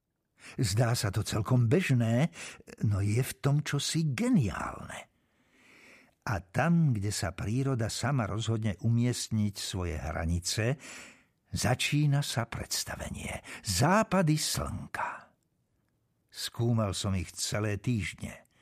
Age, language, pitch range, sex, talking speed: 60-79, Slovak, 100-140 Hz, male, 100 wpm